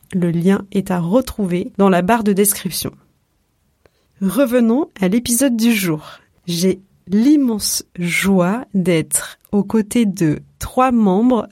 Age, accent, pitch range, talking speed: 30-49, French, 185-215 Hz, 125 wpm